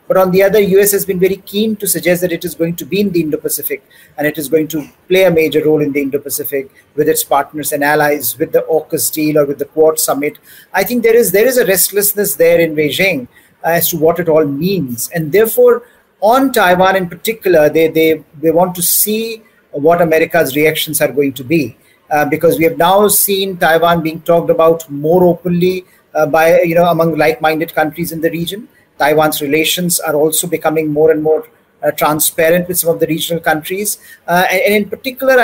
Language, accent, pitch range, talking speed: English, Indian, 160-195 Hz, 210 wpm